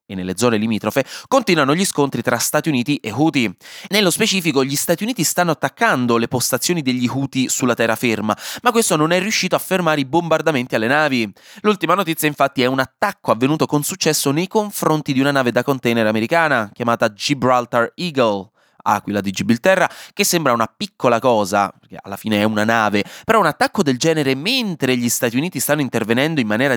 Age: 20-39